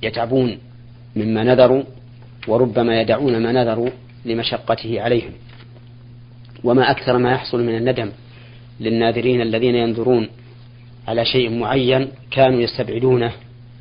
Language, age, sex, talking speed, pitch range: Arabic, 40-59, male, 100 wpm, 115-125 Hz